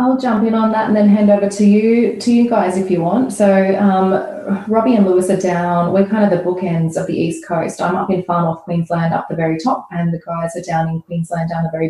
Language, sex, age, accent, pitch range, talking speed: English, female, 20-39, Australian, 165-195 Hz, 265 wpm